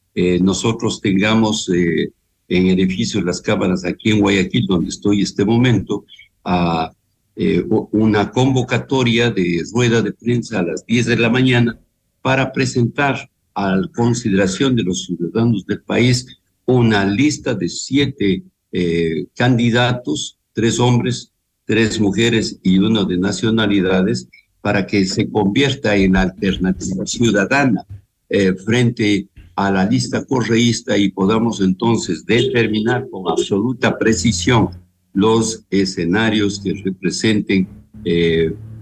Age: 60-79